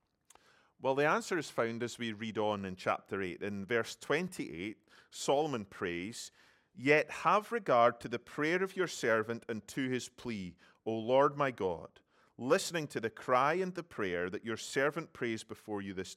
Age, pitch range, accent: 30-49, 110-150 Hz, British